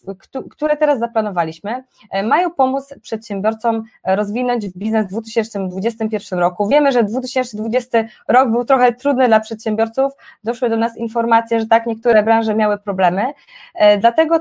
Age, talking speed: 20-39, 130 wpm